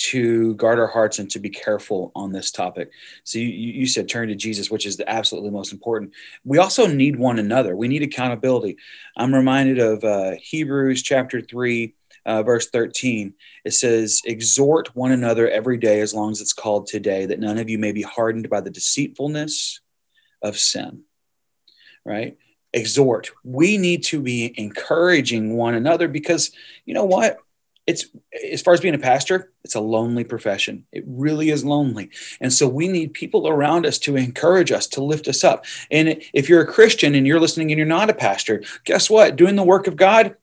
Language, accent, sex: English, American, male